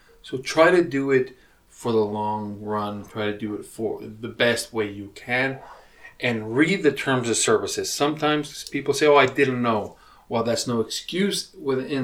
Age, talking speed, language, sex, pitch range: 40-59, 185 wpm, English, male, 115-140 Hz